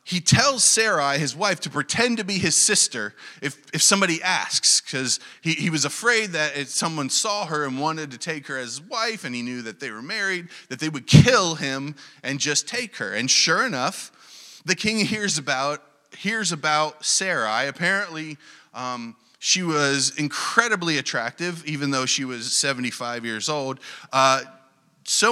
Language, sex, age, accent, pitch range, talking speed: English, male, 30-49, American, 145-200 Hz, 170 wpm